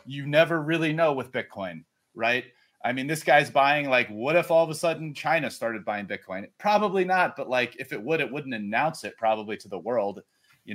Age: 30-49